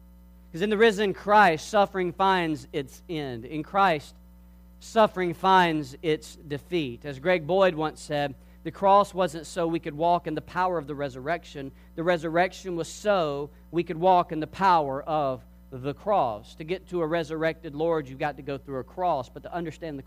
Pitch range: 135-200 Hz